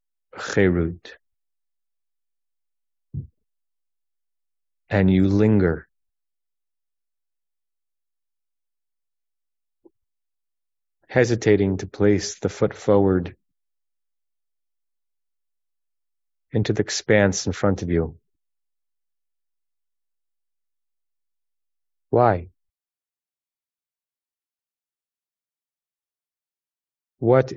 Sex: male